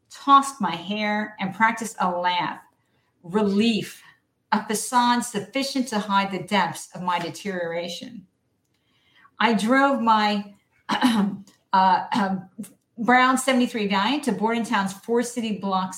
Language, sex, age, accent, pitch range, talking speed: English, female, 50-69, American, 185-235 Hz, 105 wpm